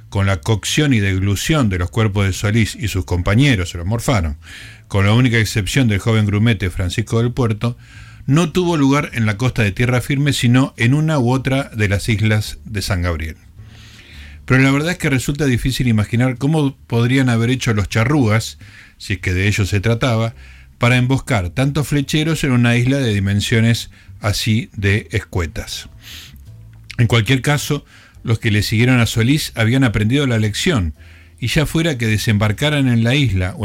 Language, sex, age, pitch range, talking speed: Spanish, male, 50-69, 100-125 Hz, 180 wpm